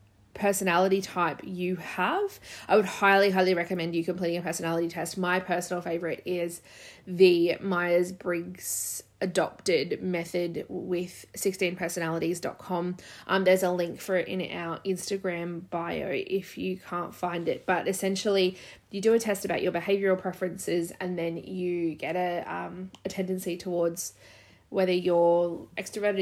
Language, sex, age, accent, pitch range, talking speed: English, female, 20-39, Australian, 170-190 Hz, 140 wpm